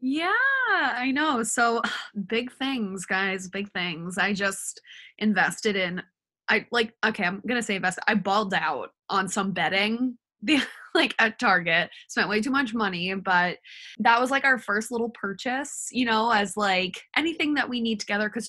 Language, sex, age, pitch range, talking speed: English, female, 20-39, 195-255 Hz, 175 wpm